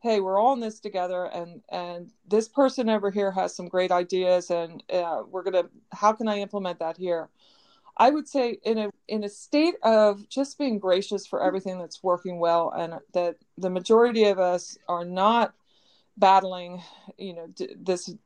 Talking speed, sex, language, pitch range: 185 wpm, female, English, 185-265 Hz